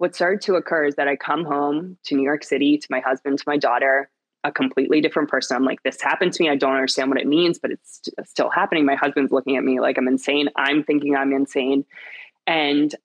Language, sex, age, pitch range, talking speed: English, female, 20-39, 135-165 Hz, 245 wpm